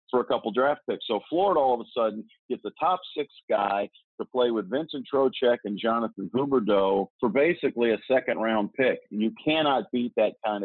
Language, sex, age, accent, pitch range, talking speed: English, male, 50-69, American, 105-125 Hz, 205 wpm